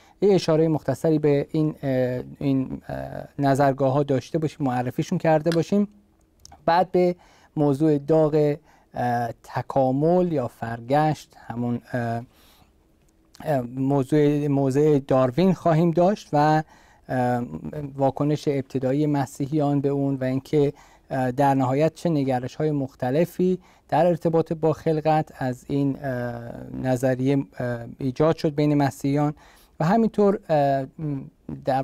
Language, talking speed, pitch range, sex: Persian, 110 wpm, 125-155 Hz, male